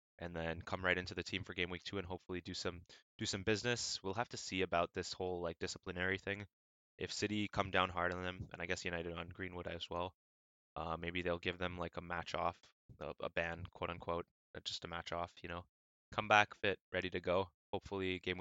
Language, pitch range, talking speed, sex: English, 85-95 Hz, 235 wpm, male